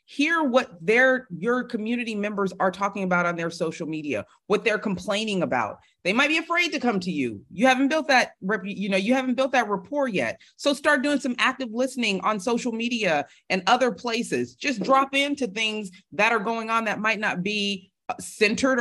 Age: 40-59